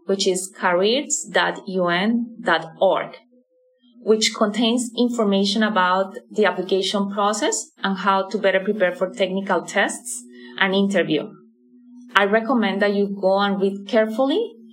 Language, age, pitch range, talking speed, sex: English, 20-39, 180-225 Hz, 115 wpm, female